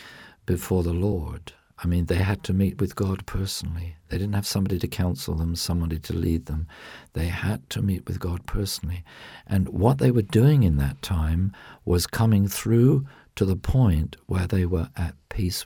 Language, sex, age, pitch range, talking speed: English, male, 50-69, 85-105 Hz, 190 wpm